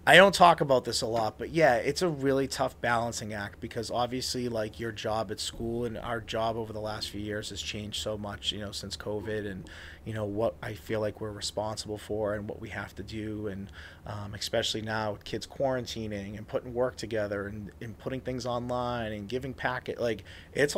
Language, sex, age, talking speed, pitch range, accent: English, male, 30-49, 215 wpm, 105-120 Hz, American